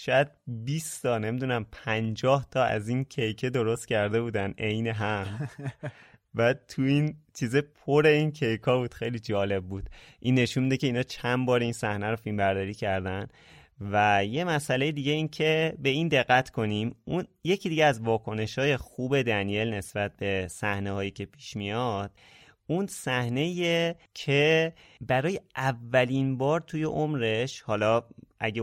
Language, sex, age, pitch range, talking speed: Persian, male, 30-49, 105-140 Hz, 150 wpm